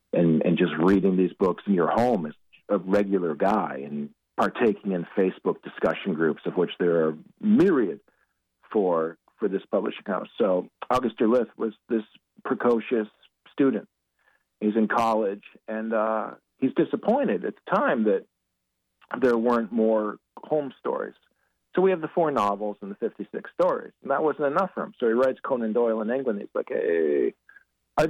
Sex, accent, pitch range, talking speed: male, American, 110-180 Hz, 170 wpm